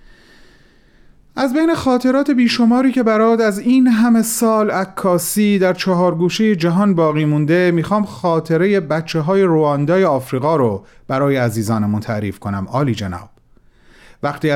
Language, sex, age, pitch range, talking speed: Persian, male, 40-59, 130-185 Hz, 130 wpm